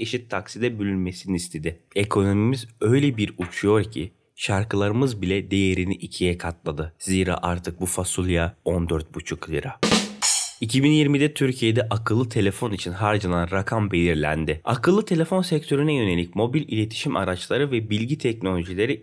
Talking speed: 120 wpm